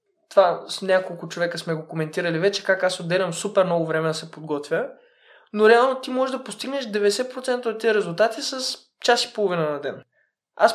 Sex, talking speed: male, 190 wpm